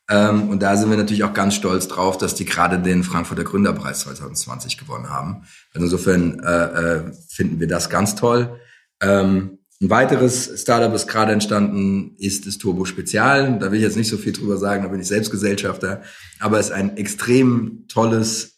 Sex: male